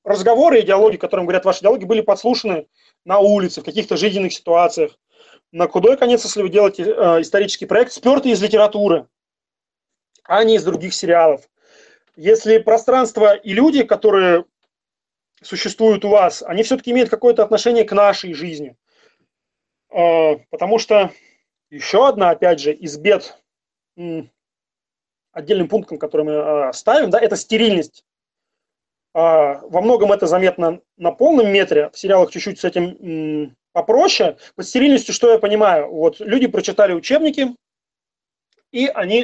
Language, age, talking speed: Russian, 30-49, 135 wpm